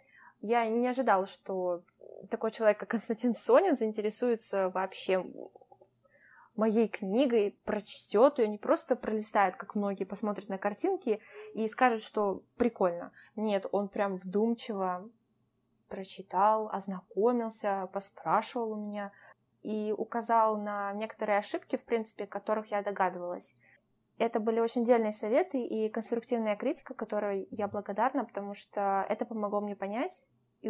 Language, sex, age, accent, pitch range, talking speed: Russian, female, 20-39, native, 195-235 Hz, 125 wpm